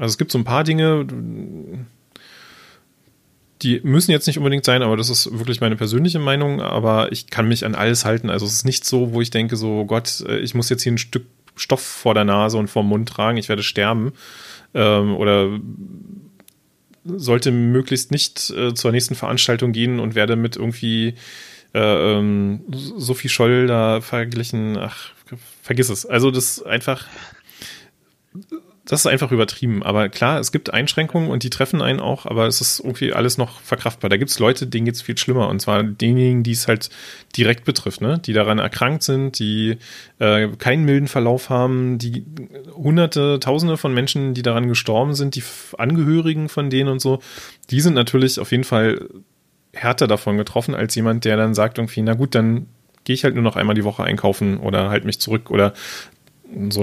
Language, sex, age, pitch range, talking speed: German, male, 30-49, 110-135 Hz, 185 wpm